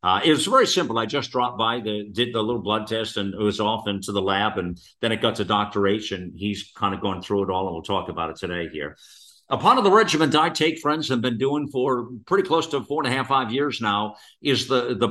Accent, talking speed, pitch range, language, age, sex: American, 275 wpm, 100-130 Hz, English, 50-69, male